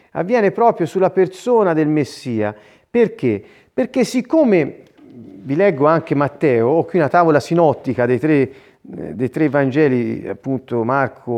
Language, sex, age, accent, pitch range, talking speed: Italian, male, 40-59, native, 130-195 Hz, 125 wpm